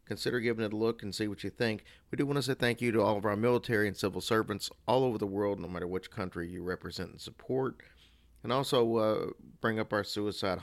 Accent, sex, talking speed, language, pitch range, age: American, male, 250 wpm, English, 90-105 Hz, 40-59